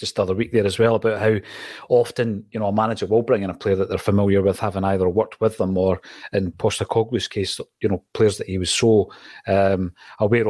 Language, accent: English, British